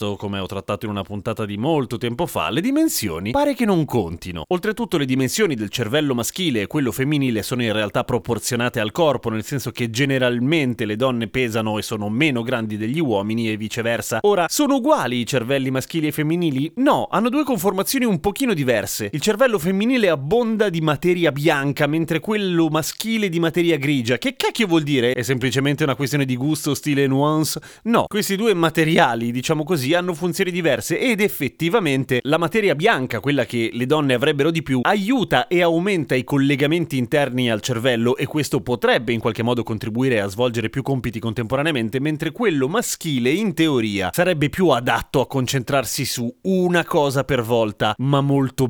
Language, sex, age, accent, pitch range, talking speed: Italian, male, 30-49, native, 120-175 Hz, 175 wpm